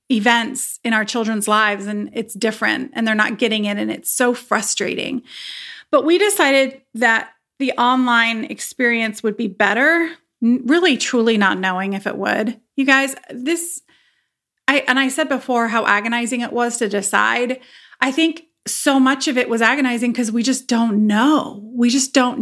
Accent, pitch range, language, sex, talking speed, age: American, 225-280 Hz, English, female, 170 wpm, 30-49